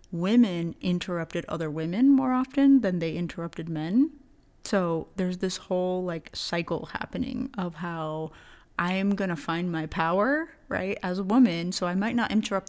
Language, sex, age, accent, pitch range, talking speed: English, female, 30-49, American, 170-200 Hz, 165 wpm